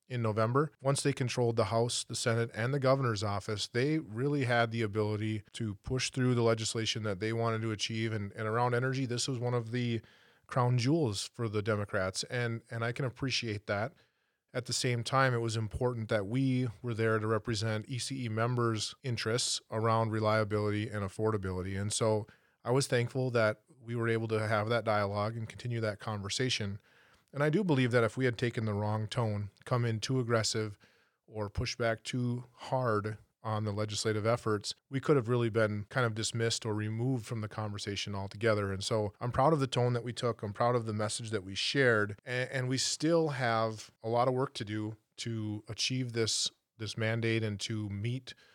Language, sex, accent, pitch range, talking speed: English, male, American, 110-125 Hz, 200 wpm